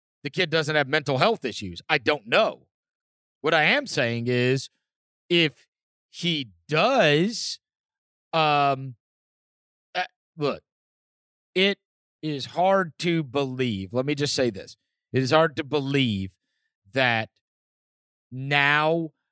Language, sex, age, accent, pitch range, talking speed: English, male, 30-49, American, 135-170 Hz, 115 wpm